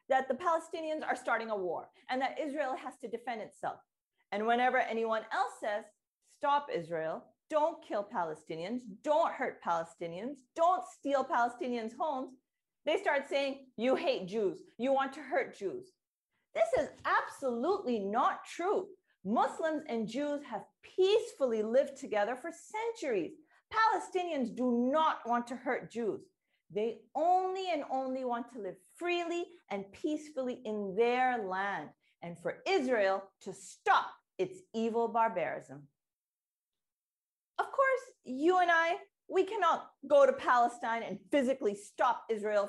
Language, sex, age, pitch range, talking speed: Arabic, female, 40-59, 220-330 Hz, 140 wpm